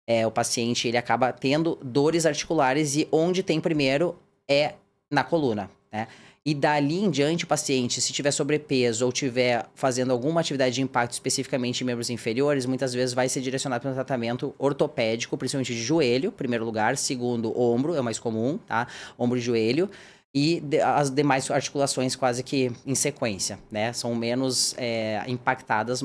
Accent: Brazilian